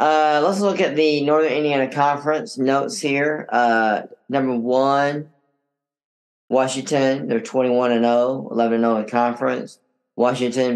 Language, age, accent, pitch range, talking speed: English, 10-29, American, 115-140 Hz, 100 wpm